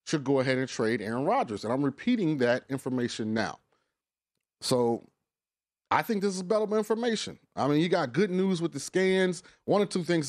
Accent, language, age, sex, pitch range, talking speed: American, English, 30-49, male, 130-170 Hz, 190 wpm